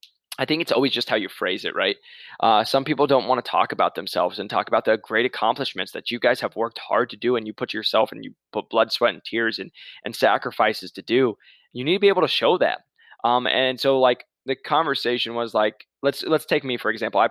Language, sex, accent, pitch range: English, male, American, 110-135 Hz